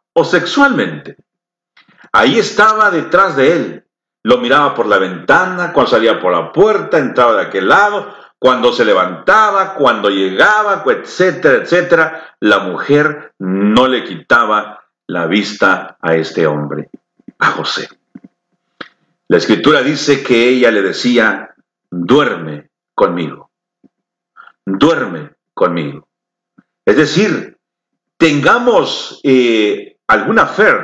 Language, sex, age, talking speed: Spanish, male, 50-69, 110 wpm